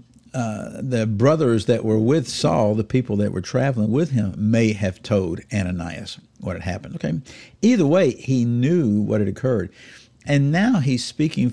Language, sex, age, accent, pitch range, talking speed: English, male, 50-69, American, 110-155 Hz, 170 wpm